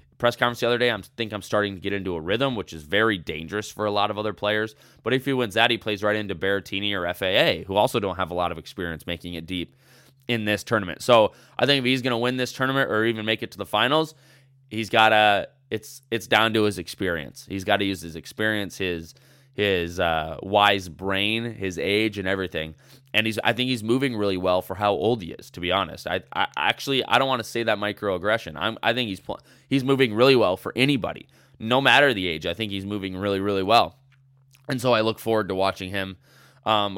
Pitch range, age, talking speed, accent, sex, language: 100-130 Hz, 20-39, 240 wpm, American, male, English